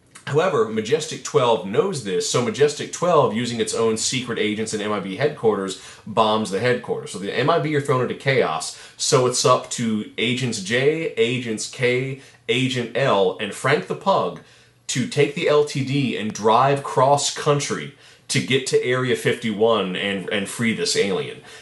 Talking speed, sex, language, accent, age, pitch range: 165 wpm, male, English, American, 30-49, 110-140 Hz